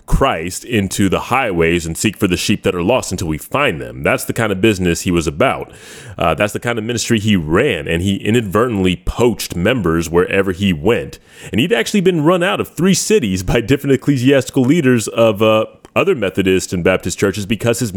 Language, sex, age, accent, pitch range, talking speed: English, male, 30-49, American, 95-135 Hz, 205 wpm